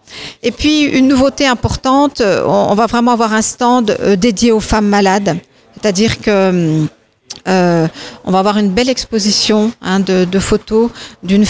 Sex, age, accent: female, 50-69, French